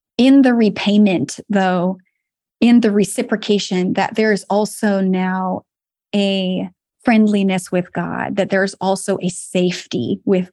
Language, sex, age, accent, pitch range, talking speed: English, female, 20-39, American, 190-220 Hz, 125 wpm